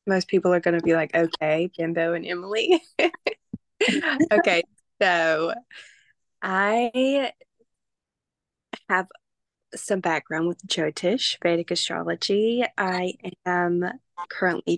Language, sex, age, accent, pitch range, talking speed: English, female, 20-39, American, 170-195 Hz, 95 wpm